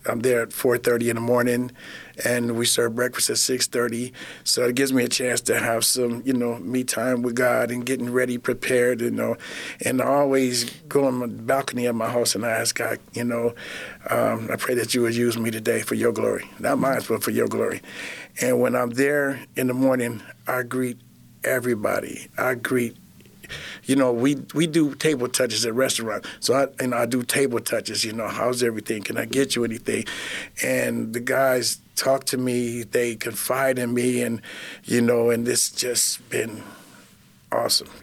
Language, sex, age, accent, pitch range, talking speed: English, male, 50-69, American, 120-130 Hz, 195 wpm